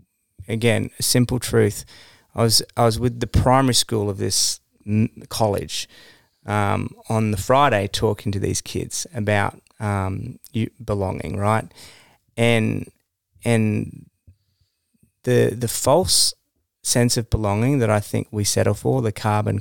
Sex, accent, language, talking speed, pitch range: male, Australian, English, 135 wpm, 105-125 Hz